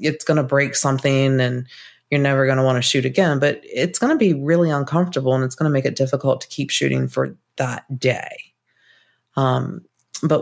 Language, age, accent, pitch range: English, 30-49, American, 135-155 Hz